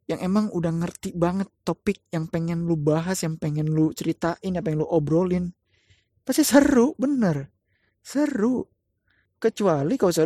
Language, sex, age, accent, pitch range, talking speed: Indonesian, male, 20-39, native, 145-185 Hz, 145 wpm